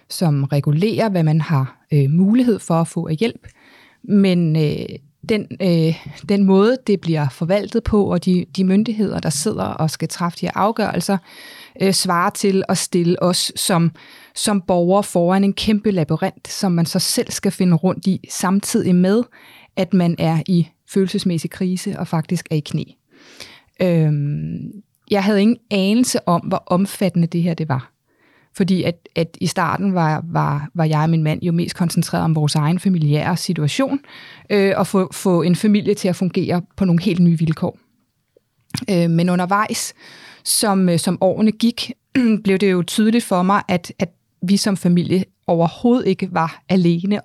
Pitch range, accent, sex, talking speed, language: 165-200 Hz, native, female, 175 wpm, Danish